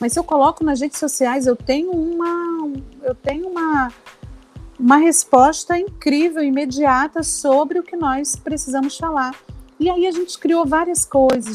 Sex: female